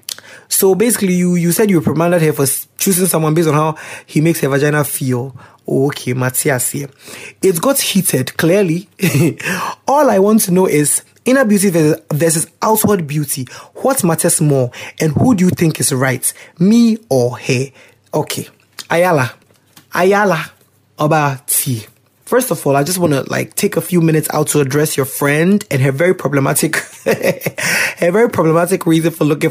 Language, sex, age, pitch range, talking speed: English, male, 20-39, 145-190 Hz, 170 wpm